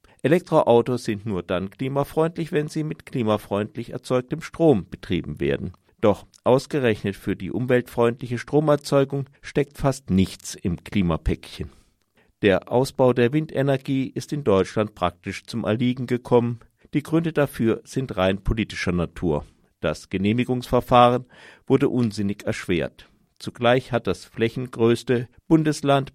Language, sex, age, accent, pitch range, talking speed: German, male, 50-69, German, 100-130 Hz, 120 wpm